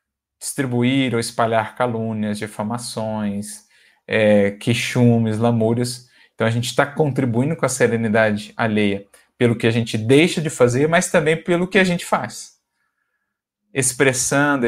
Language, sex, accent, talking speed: Portuguese, male, Brazilian, 130 wpm